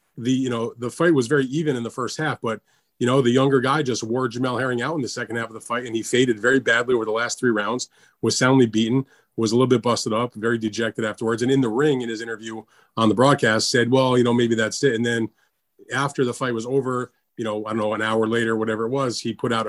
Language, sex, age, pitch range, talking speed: English, male, 30-49, 110-125 Hz, 275 wpm